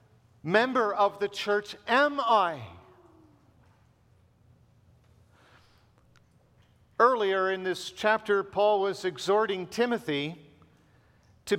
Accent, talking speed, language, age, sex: American, 80 wpm, English, 50-69, male